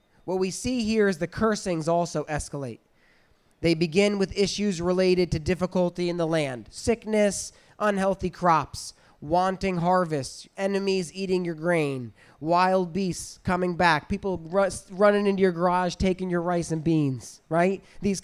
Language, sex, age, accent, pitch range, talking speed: English, male, 20-39, American, 160-200 Hz, 150 wpm